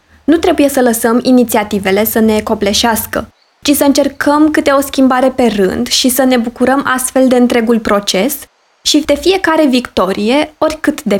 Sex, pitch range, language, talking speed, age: female, 220-275 Hz, Romanian, 160 wpm, 20-39